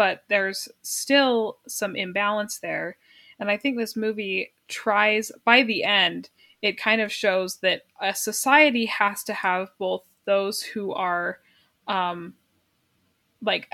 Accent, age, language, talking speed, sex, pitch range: American, 20-39, English, 135 wpm, female, 185-225 Hz